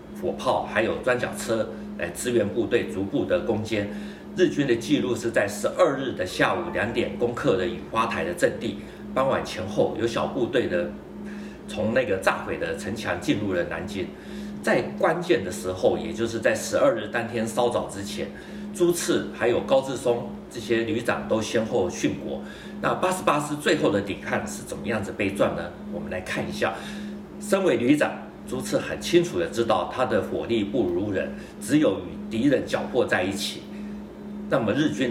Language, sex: Chinese, male